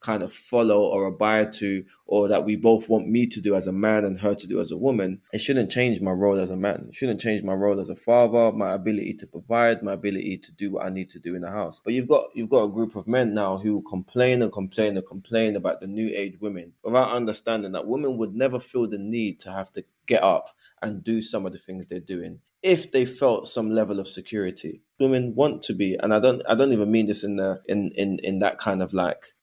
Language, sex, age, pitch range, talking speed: English, male, 20-39, 100-130 Hz, 260 wpm